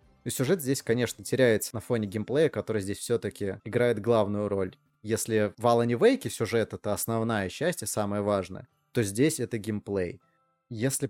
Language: Russian